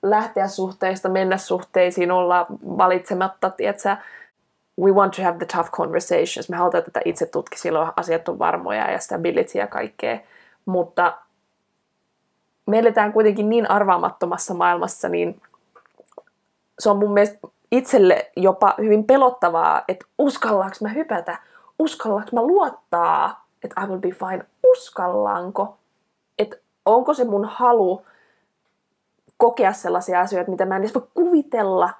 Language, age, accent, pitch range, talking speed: Finnish, 20-39, native, 180-235 Hz, 130 wpm